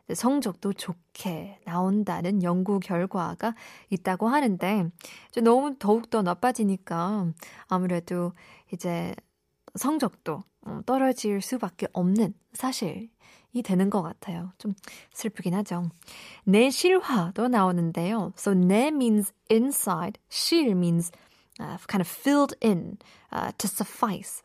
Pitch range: 180-225 Hz